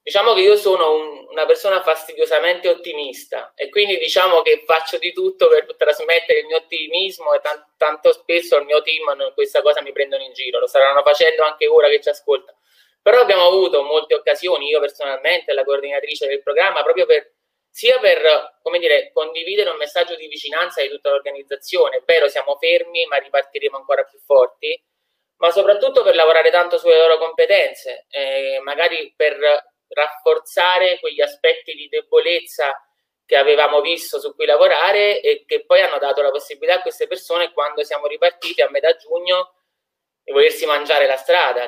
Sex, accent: male, native